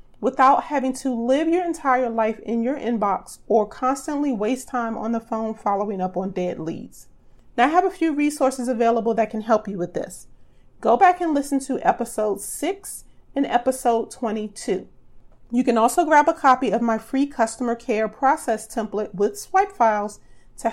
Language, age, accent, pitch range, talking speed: English, 30-49, American, 220-275 Hz, 180 wpm